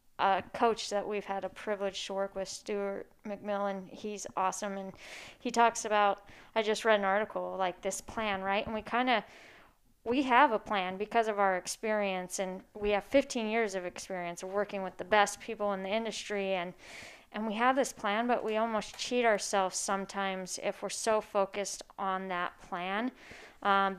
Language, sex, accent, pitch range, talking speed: English, female, American, 190-215 Hz, 185 wpm